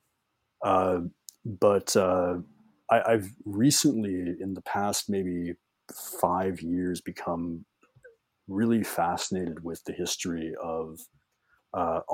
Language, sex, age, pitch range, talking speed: English, male, 30-49, 85-95 Hz, 95 wpm